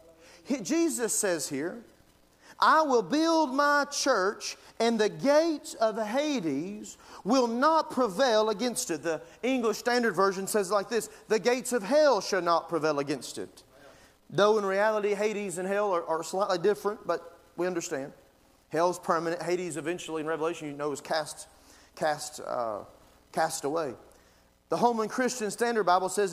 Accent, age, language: American, 40-59, English